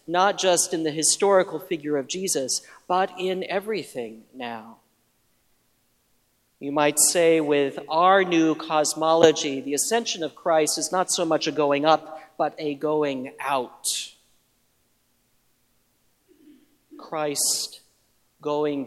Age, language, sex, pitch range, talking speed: 40-59, English, male, 130-160 Hz, 115 wpm